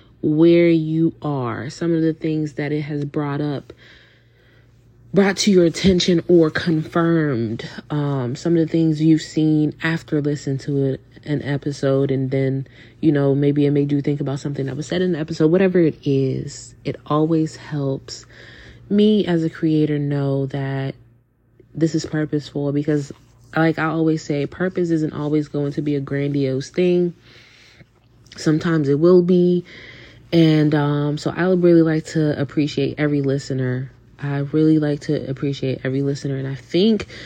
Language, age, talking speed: English, 30-49, 165 wpm